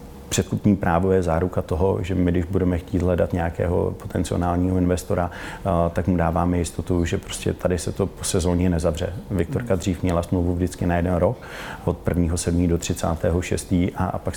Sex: male